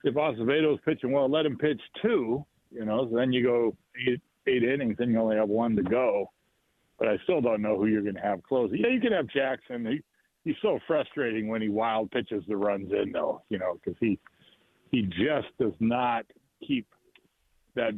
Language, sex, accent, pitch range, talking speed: English, male, American, 115-190 Hz, 200 wpm